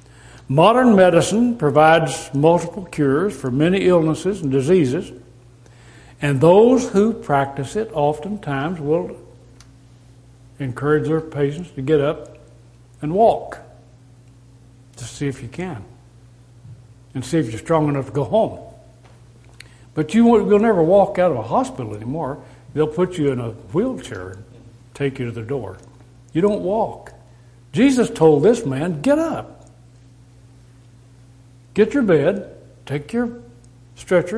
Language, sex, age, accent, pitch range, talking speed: English, male, 60-79, American, 120-160 Hz, 130 wpm